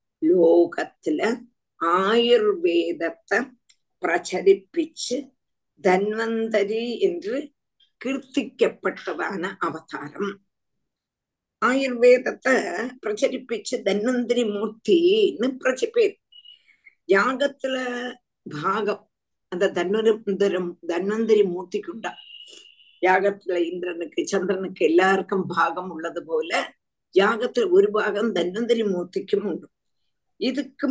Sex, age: female, 50-69